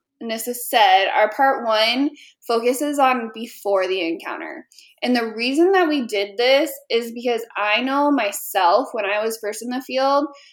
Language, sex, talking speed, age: English, female, 165 wpm, 20-39